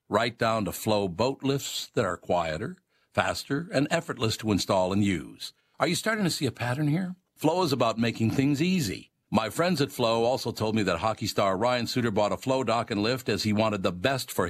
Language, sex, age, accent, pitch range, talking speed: English, male, 60-79, American, 95-125 Hz, 225 wpm